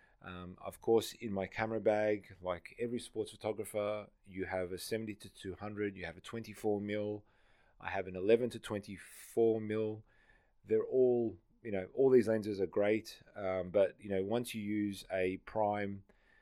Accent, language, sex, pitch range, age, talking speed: Australian, English, male, 95-110 Hz, 30-49, 170 wpm